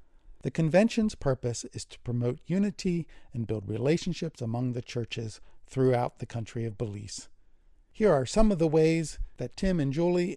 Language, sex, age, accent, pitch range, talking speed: English, male, 50-69, American, 120-165 Hz, 160 wpm